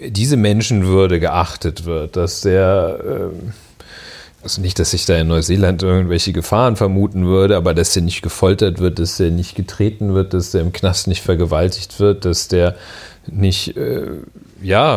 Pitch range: 95-115 Hz